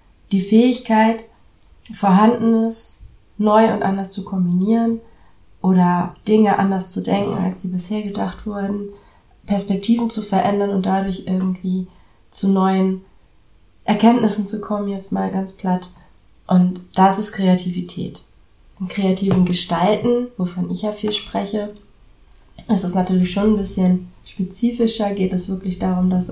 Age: 30-49